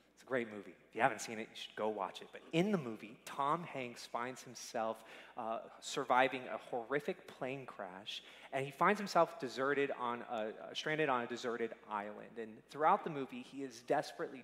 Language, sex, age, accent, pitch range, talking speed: English, male, 30-49, American, 115-145 Hz, 190 wpm